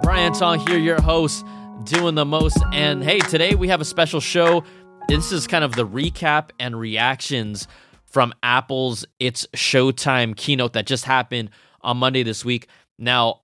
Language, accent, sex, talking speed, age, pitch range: English, American, male, 165 wpm, 20-39, 115-155 Hz